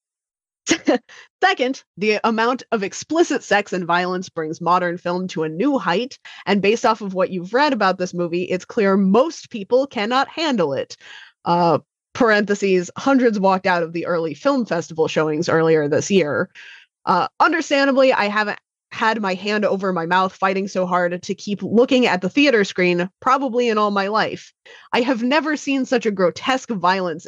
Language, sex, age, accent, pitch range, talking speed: English, female, 20-39, American, 180-255 Hz, 175 wpm